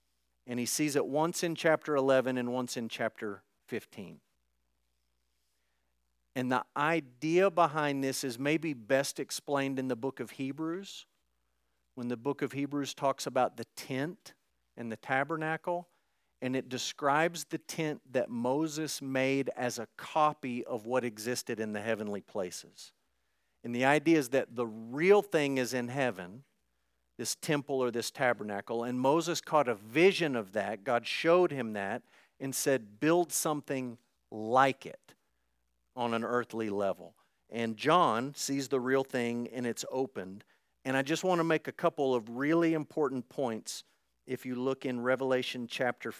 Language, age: English, 50-69